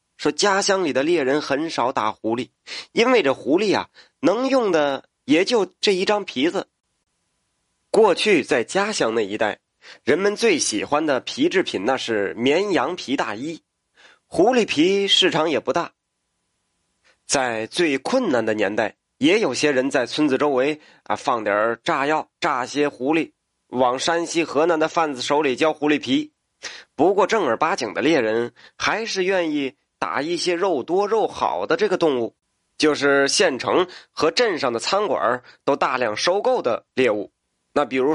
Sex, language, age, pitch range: male, Chinese, 30-49, 135-215 Hz